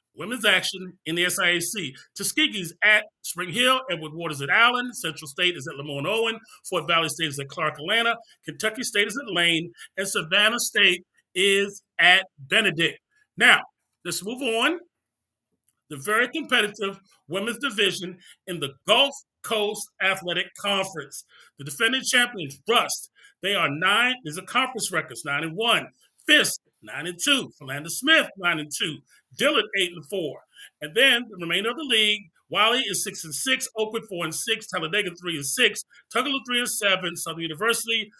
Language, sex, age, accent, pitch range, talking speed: English, male, 30-49, American, 170-225 Hz, 165 wpm